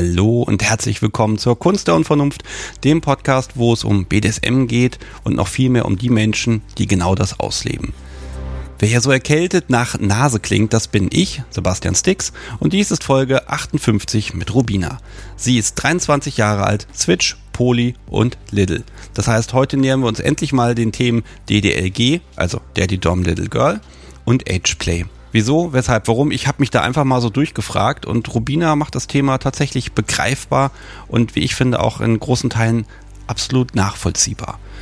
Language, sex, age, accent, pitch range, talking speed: German, male, 40-59, German, 100-130 Hz, 170 wpm